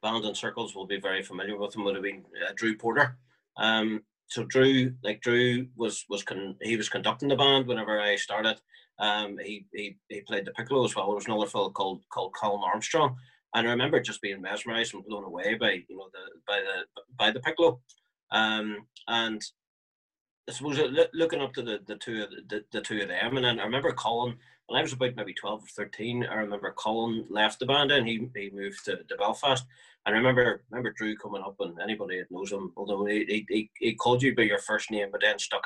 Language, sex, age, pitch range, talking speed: English, male, 30-49, 105-125 Hz, 225 wpm